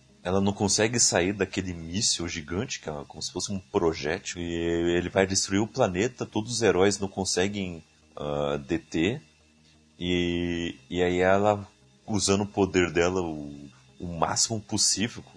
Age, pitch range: 30-49, 80-105 Hz